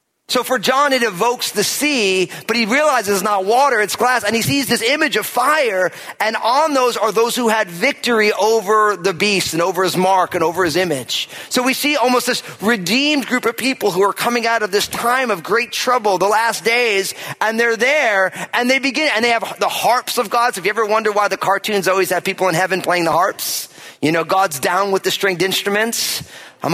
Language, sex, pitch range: English, male, 155-220 Hz